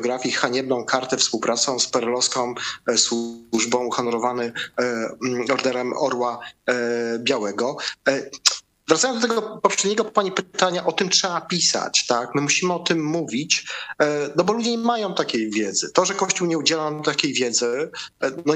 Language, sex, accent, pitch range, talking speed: Polish, male, native, 120-160 Hz, 135 wpm